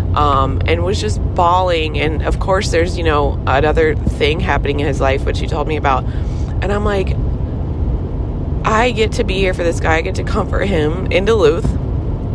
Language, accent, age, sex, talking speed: English, American, 20-39, female, 195 wpm